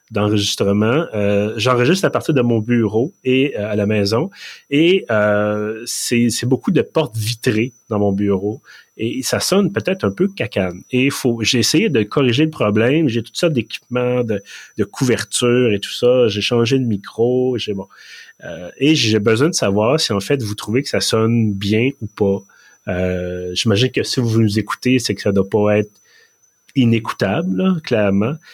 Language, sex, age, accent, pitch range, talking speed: French, male, 30-49, Canadian, 105-130 Hz, 185 wpm